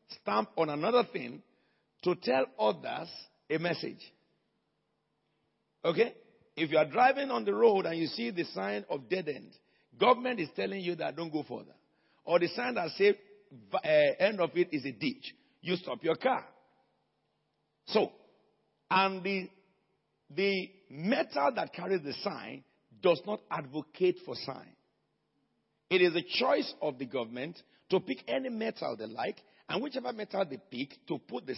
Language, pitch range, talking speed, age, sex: English, 165-255 Hz, 160 wpm, 50-69, male